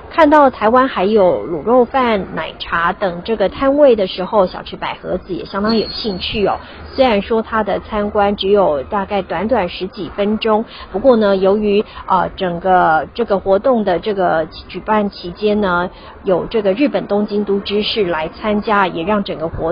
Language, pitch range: Chinese, 190-235 Hz